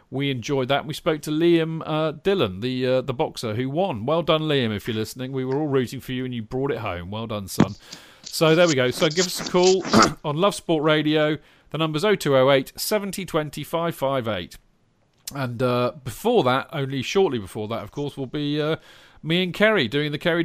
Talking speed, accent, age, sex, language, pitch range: 210 wpm, British, 40-59, male, English, 125-165 Hz